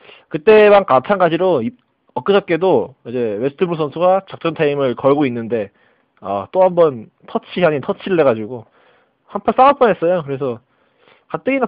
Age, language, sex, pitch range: 20-39, Korean, male, 130-200 Hz